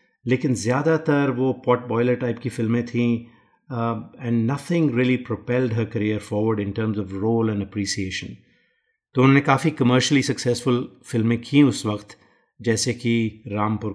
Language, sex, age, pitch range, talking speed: Hindi, male, 30-49, 110-125 Hz, 145 wpm